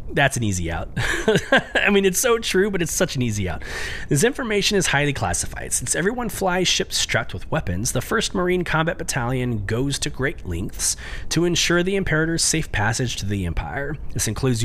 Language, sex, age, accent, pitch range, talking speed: English, male, 30-49, American, 100-155 Hz, 195 wpm